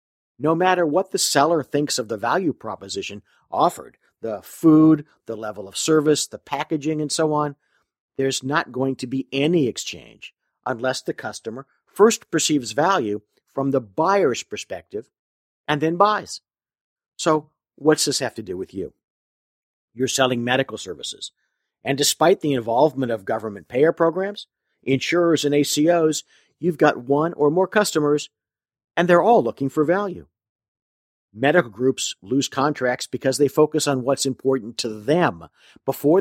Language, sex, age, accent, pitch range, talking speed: English, male, 50-69, American, 125-160 Hz, 150 wpm